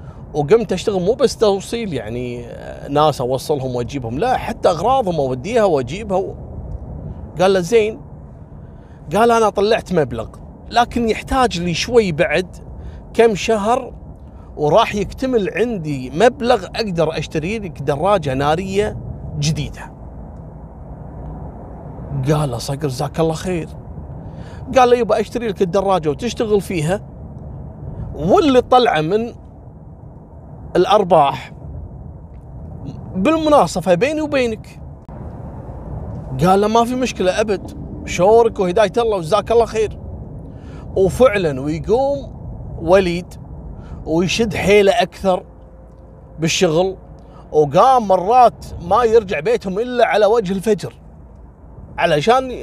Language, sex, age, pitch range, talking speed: Arabic, male, 30-49, 155-225 Hz, 100 wpm